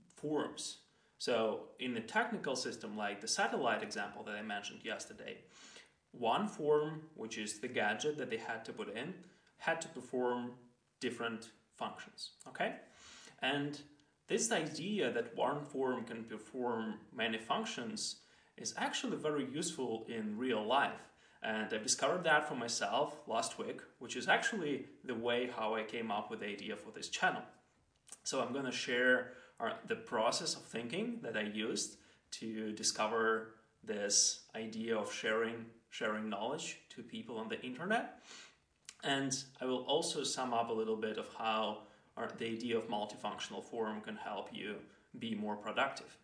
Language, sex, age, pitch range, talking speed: English, male, 30-49, 110-150 Hz, 155 wpm